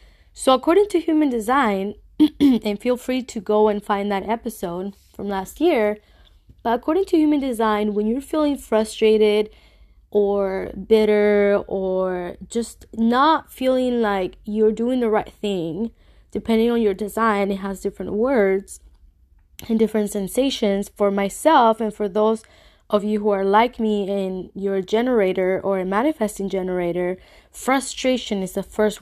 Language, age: English, 20-39